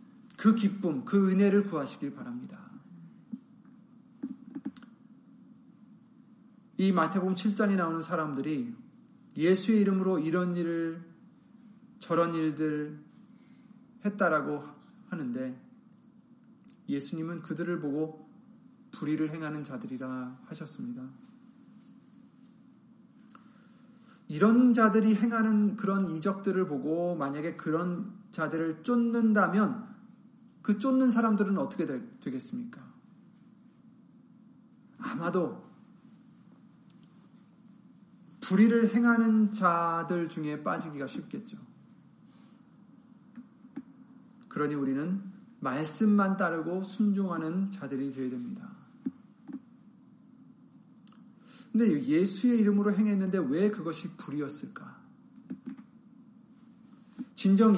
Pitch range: 190-235 Hz